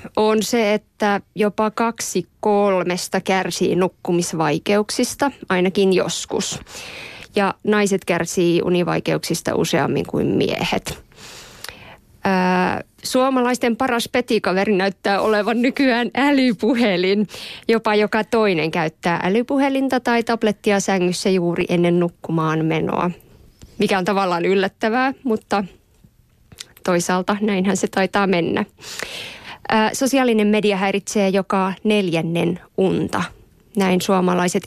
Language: Finnish